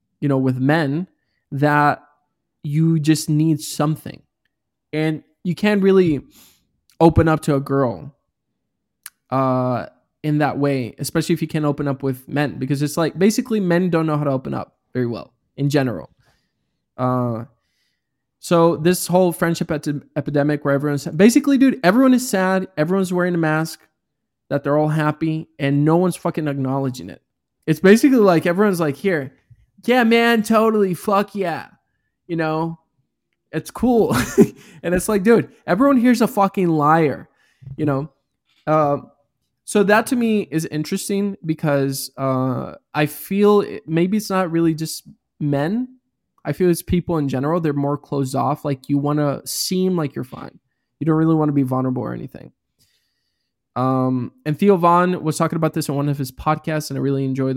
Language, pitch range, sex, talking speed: English, 140-180 Hz, male, 165 wpm